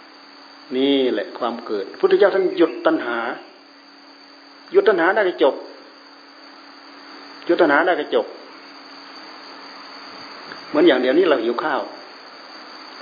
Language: Thai